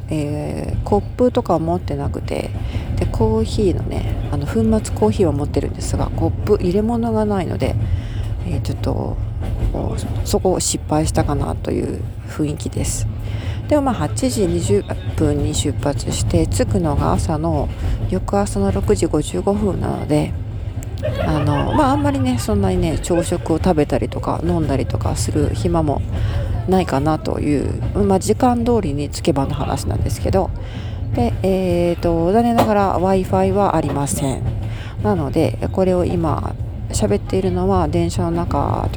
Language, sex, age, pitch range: Japanese, female, 40-59, 95-115 Hz